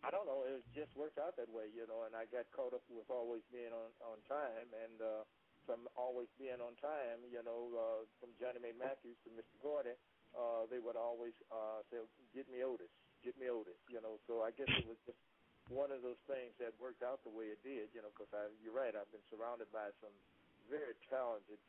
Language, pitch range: English, 110-125 Hz